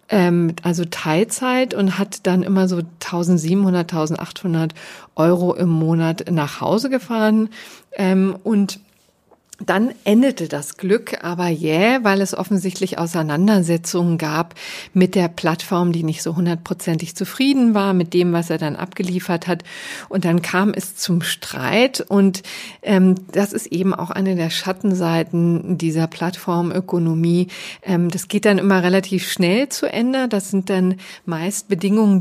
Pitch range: 170-200 Hz